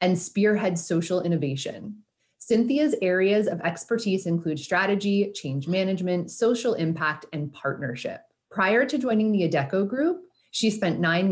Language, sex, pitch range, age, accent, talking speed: English, female, 160-215 Hz, 30-49, American, 135 wpm